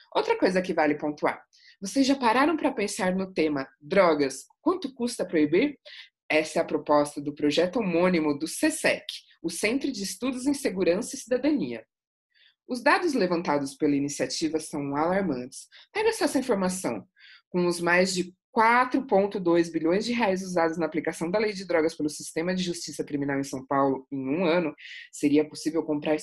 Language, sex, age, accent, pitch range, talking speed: Portuguese, female, 20-39, Brazilian, 150-235 Hz, 165 wpm